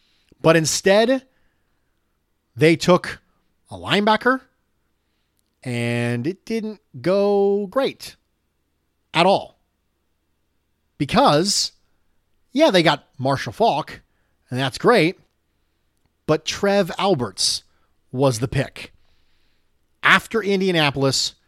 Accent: American